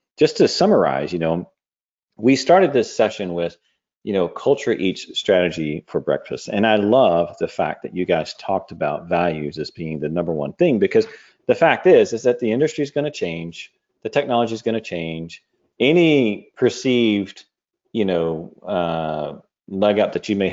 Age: 40-59